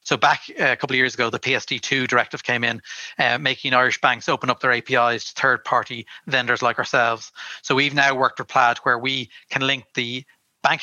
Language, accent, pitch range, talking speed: English, Irish, 120-145 Hz, 205 wpm